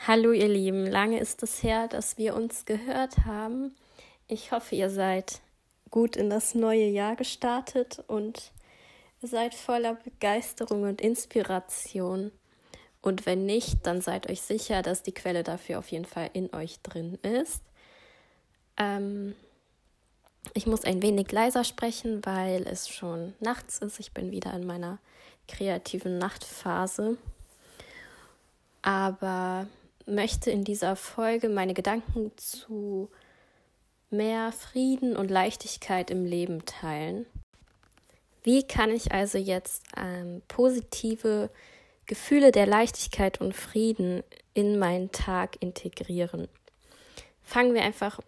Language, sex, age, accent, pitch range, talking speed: German, female, 20-39, German, 190-230 Hz, 125 wpm